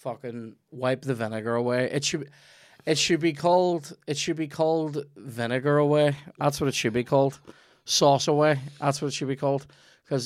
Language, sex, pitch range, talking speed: English, male, 110-140 Hz, 185 wpm